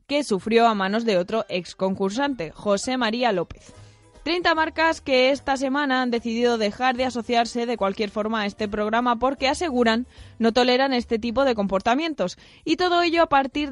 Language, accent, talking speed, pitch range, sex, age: Spanish, Spanish, 175 wpm, 215-270 Hz, female, 20-39